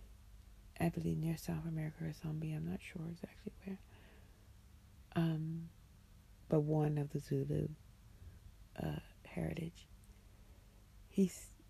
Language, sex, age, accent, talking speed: English, female, 40-59, American, 110 wpm